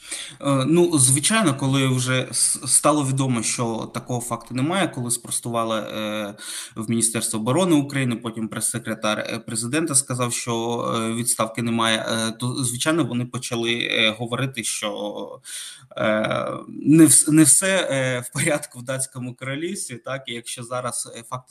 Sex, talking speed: male, 115 wpm